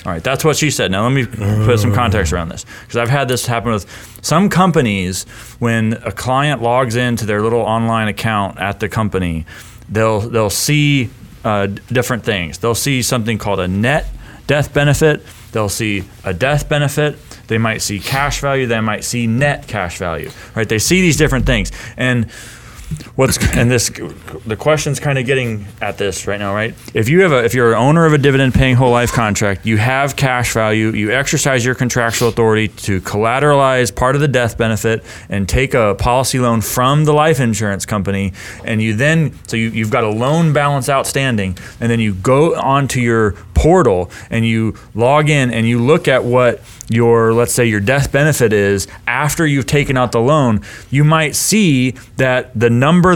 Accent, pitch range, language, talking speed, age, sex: American, 110-135 Hz, English, 195 wpm, 30-49, male